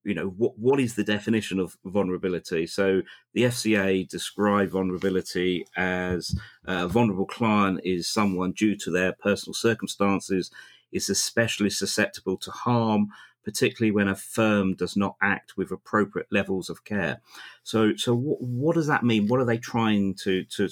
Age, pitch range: 40-59, 95-115 Hz